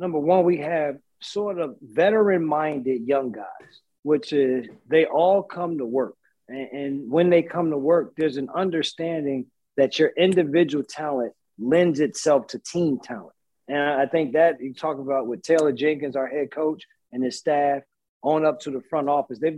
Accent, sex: American, male